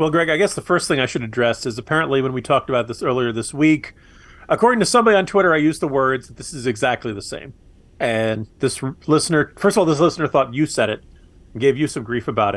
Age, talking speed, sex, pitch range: 40-59, 260 wpm, male, 115-160 Hz